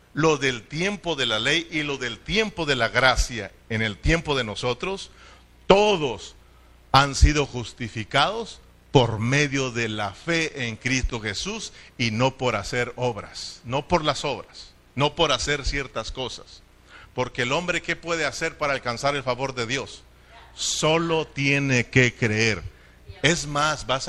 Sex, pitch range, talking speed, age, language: male, 115-165 Hz, 155 wpm, 40-59, Spanish